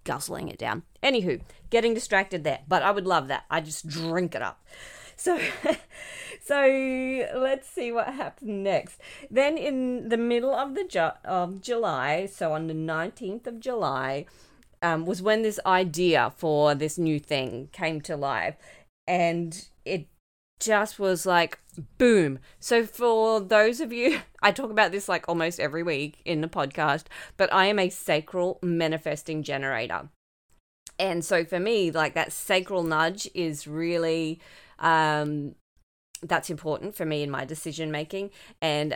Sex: female